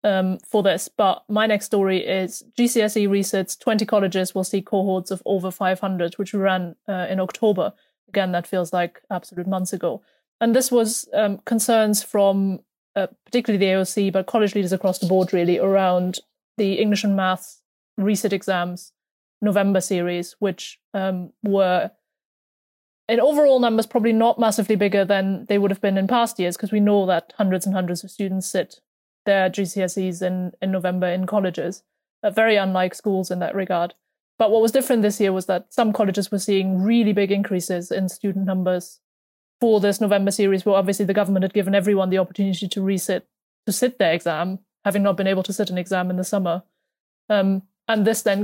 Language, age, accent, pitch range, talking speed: English, 20-39, British, 185-210 Hz, 185 wpm